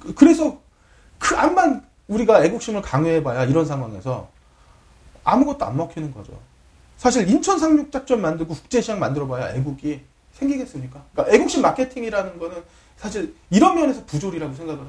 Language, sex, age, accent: Korean, male, 40-59, native